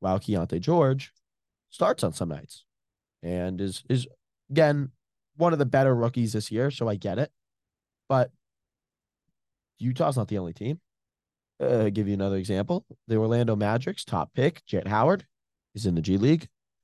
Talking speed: 165 wpm